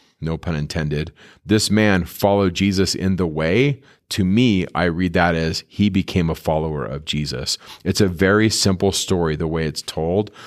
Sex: male